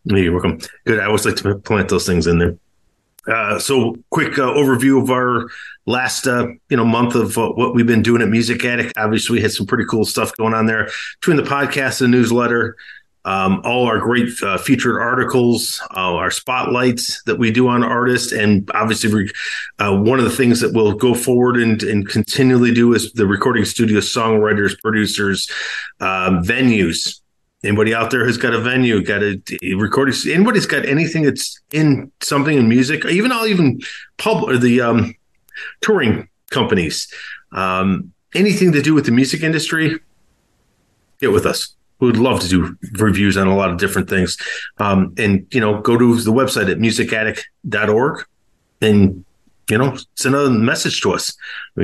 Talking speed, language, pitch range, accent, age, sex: 185 wpm, English, 105-130 Hz, American, 30-49, male